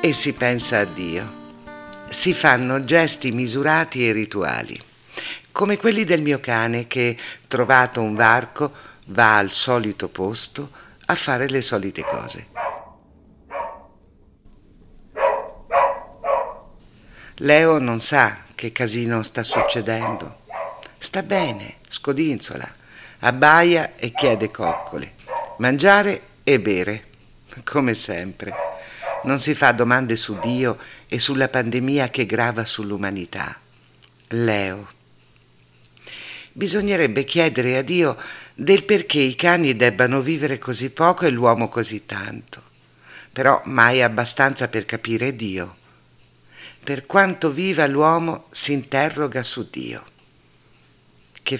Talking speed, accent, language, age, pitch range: 105 wpm, native, Italian, 60-79, 110-145 Hz